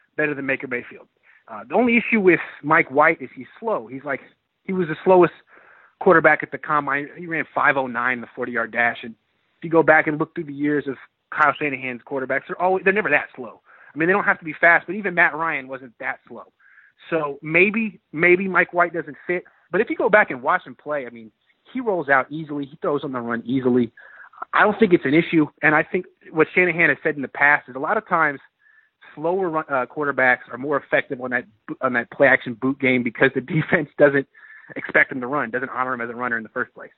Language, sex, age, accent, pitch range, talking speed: English, male, 30-49, American, 125-170 Hz, 235 wpm